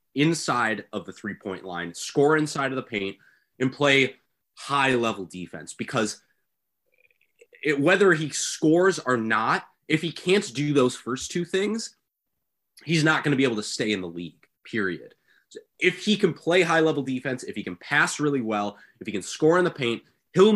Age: 20-39